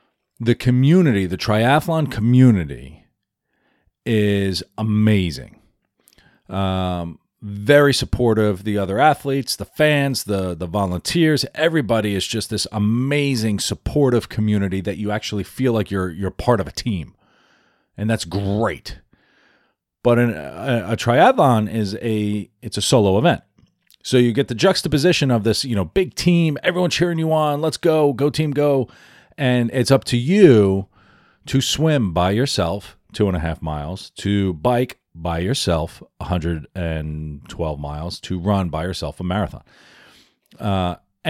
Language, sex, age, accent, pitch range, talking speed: English, male, 40-59, American, 95-125 Hz, 140 wpm